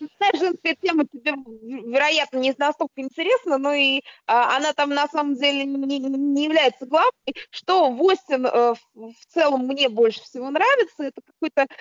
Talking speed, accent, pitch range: 145 wpm, native, 240-300 Hz